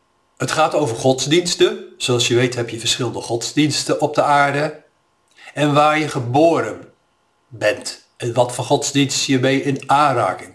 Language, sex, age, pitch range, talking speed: Dutch, male, 50-69, 125-155 Hz, 155 wpm